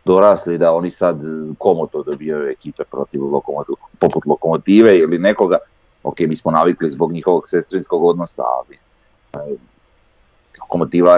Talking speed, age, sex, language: 130 wpm, 40-59, male, Croatian